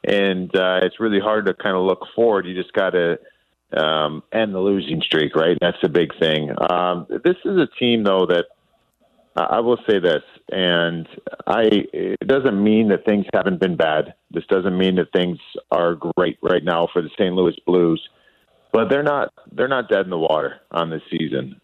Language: English